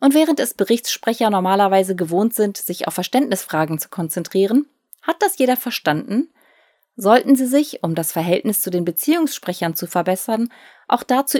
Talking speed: 155 wpm